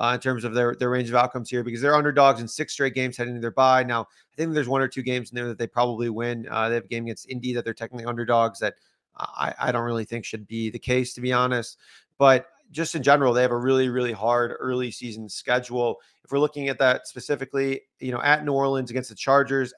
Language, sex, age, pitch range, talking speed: English, male, 30-49, 120-140 Hz, 260 wpm